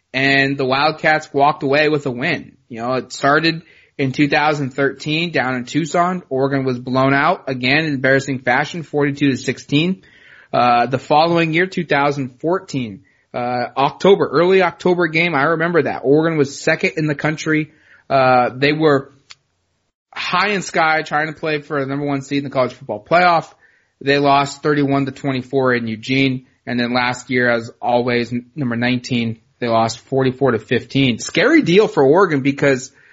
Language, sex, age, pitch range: English, male, 20-39, 130-150 Hz